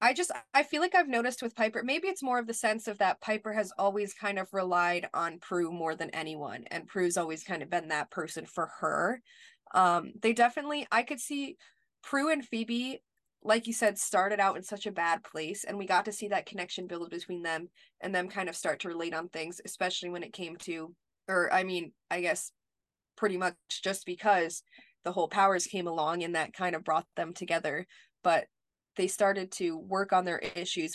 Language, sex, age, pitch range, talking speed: English, female, 20-39, 170-205 Hz, 215 wpm